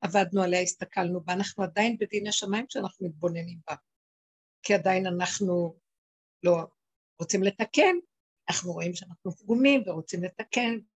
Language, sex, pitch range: Hebrew, female, 180-230 Hz